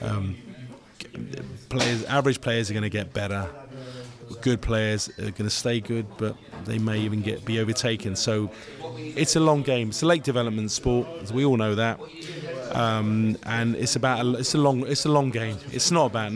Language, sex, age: English, male, 20-39